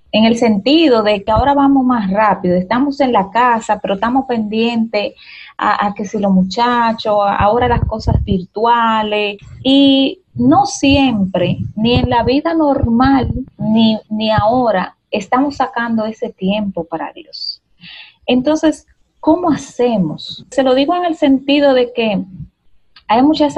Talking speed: 145 wpm